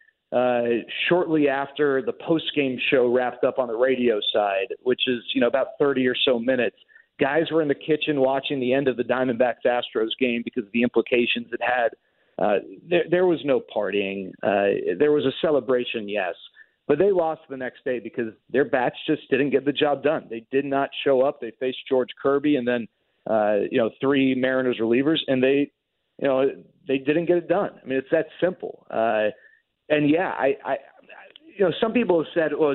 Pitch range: 125-160 Hz